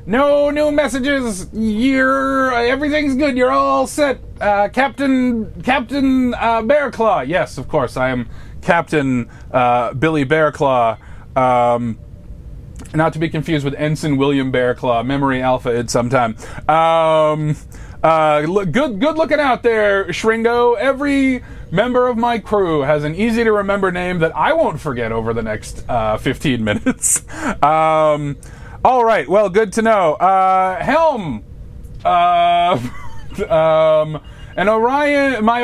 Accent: American